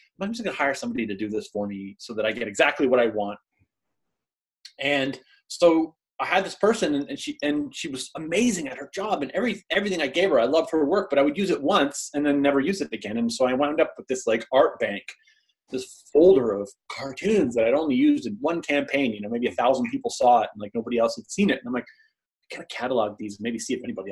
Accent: American